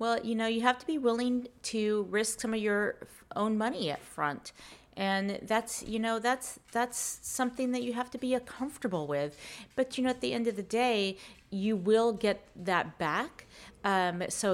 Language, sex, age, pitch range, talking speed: English, female, 30-49, 170-230 Hz, 200 wpm